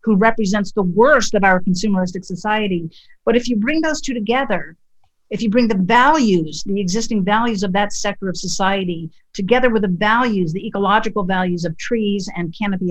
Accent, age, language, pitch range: American, 50-69, English, 185-230 Hz